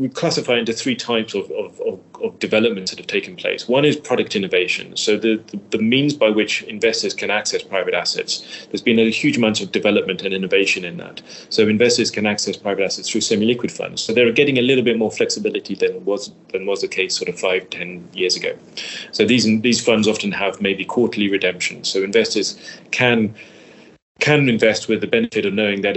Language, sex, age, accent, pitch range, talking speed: English, male, 30-49, British, 100-135 Hz, 210 wpm